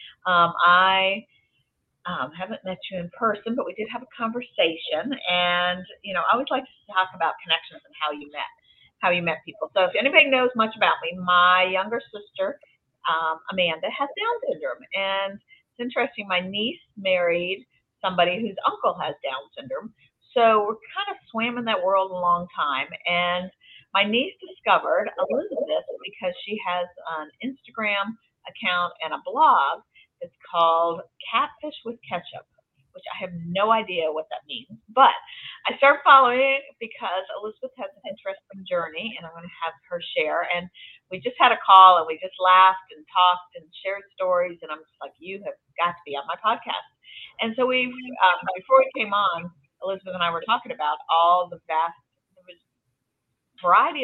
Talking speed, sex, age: 180 wpm, female, 40-59